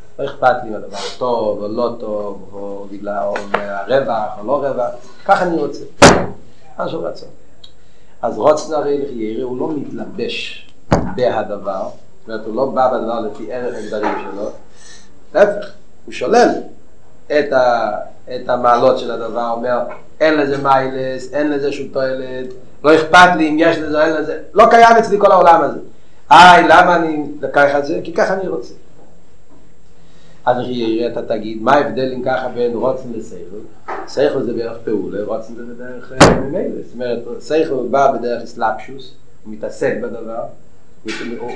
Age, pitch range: 40-59, 120-155 Hz